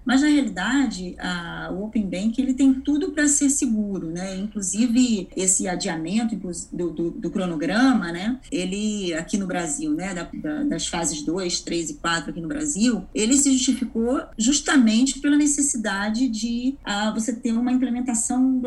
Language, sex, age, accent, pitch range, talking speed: Portuguese, female, 20-39, Brazilian, 190-265 Hz, 155 wpm